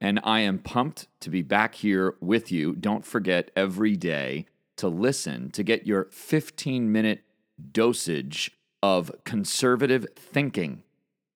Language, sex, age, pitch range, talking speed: English, male, 40-59, 95-125 Hz, 125 wpm